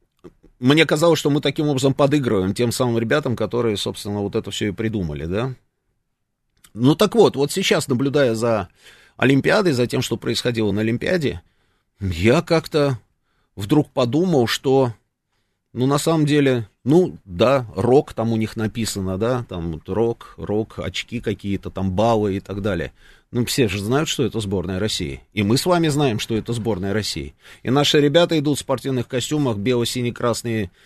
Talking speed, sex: 165 wpm, male